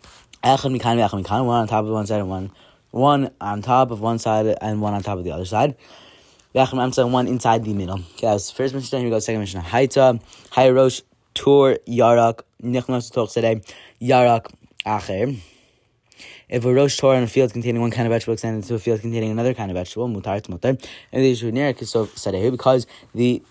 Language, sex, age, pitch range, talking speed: English, male, 20-39, 110-130 Hz, 190 wpm